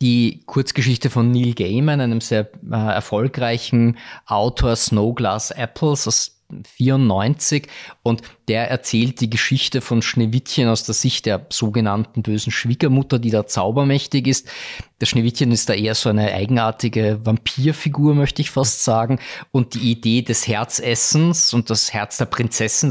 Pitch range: 110-130 Hz